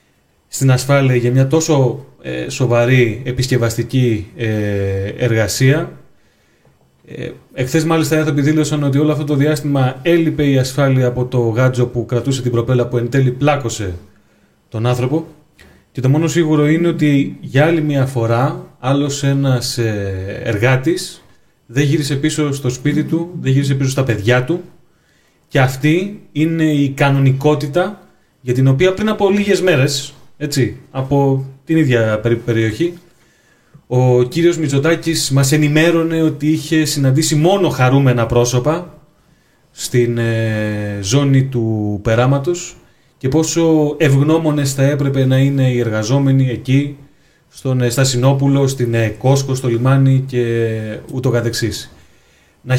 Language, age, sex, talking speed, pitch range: Greek, 30-49, male, 130 wpm, 120-155 Hz